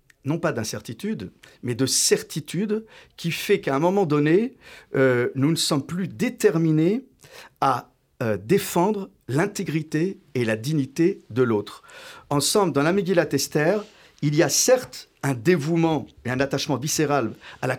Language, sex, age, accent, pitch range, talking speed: French, male, 50-69, French, 135-190 Hz, 150 wpm